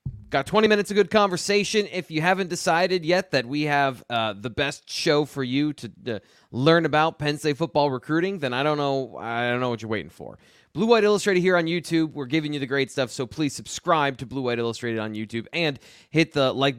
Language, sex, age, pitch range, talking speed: English, male, 20-39, 130-170 Hz, 230 wpm